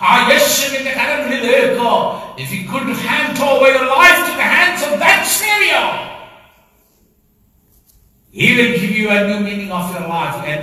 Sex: male